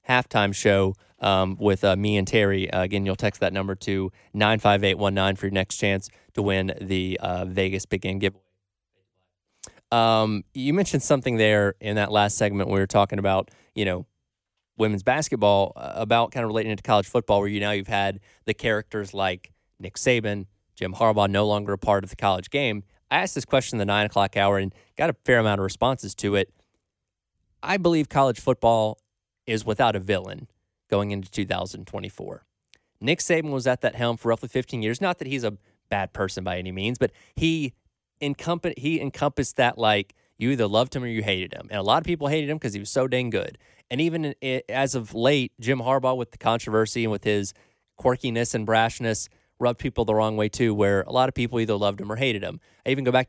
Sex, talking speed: male, 215 wpm